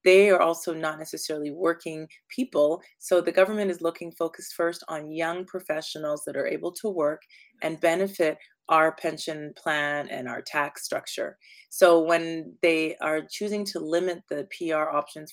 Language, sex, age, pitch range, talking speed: English, female, 30-49, 155-175 Hz, 160 wpm